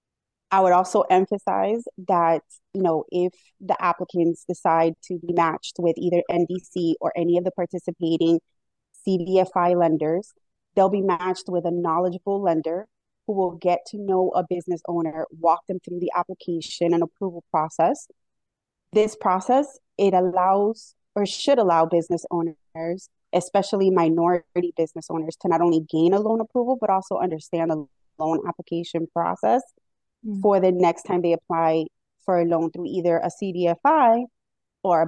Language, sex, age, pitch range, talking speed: English, female, 20-39, 165-185 Hz, 150 wpm